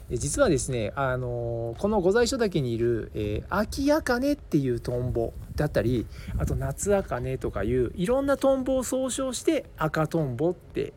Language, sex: Japanese, male